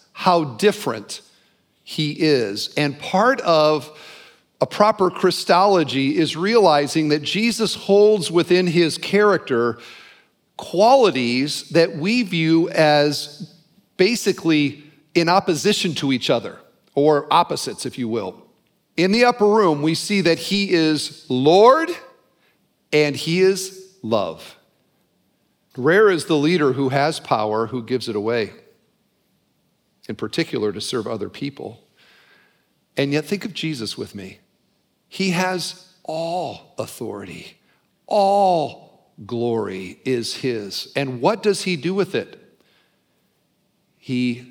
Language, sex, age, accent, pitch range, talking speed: English, male, 50-69, American, 130-185 Hz, 120 wpm